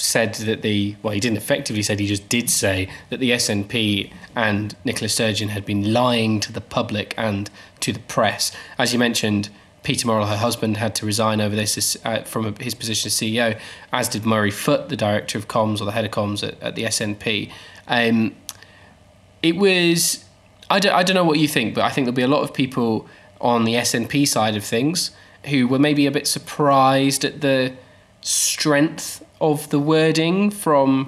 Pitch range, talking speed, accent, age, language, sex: 105-135 Hz, 195 wpm, British, 20-39, English, male